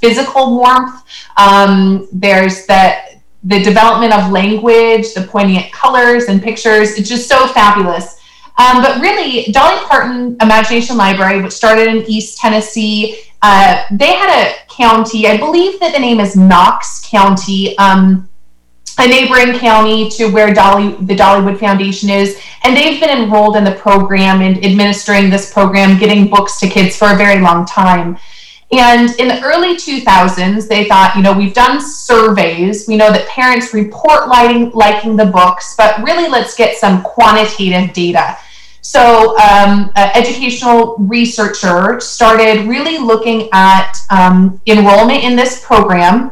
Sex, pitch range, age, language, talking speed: female, 195-240 Hz, 30-49, English, 150 wpm